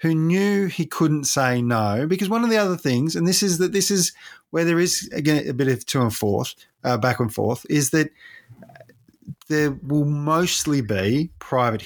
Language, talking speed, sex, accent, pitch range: English, 195 wpm, male, Australian, 115-150 Hz